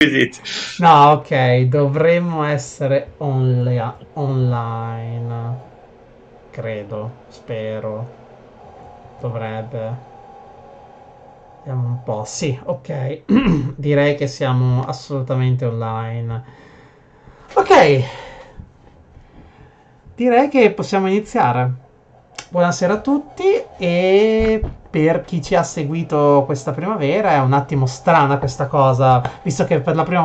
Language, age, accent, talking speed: Italian, 30-49, native, 90 wpm